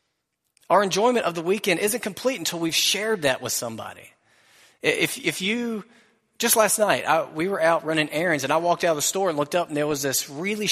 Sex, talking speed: male, 225 wpm